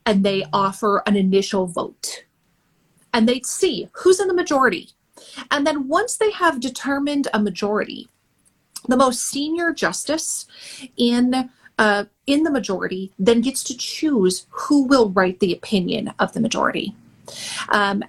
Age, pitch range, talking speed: 30-49, 200-275 Hz, 145 wpm